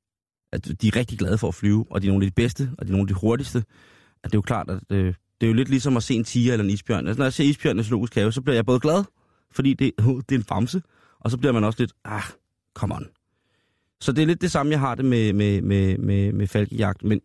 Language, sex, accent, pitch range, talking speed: Danish, male, native, 100-125 Hz, 285 wpm